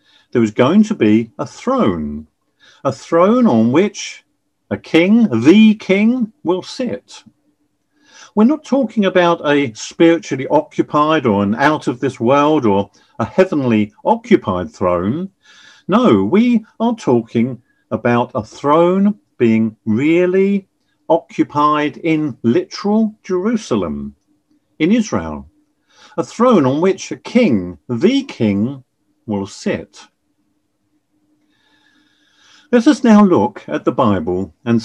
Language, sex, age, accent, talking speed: English, male, 50-69, British, 110 wpm